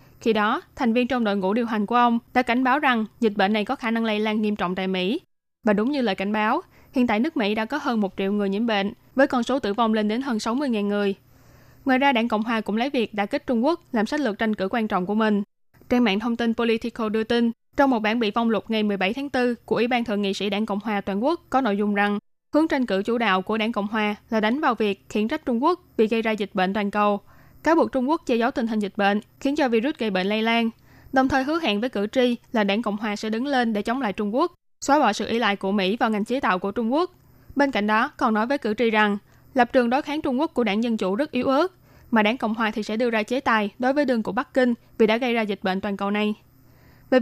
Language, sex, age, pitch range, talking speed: Vietnamese, female, 20-39, 210-255 Hz, 290 wpm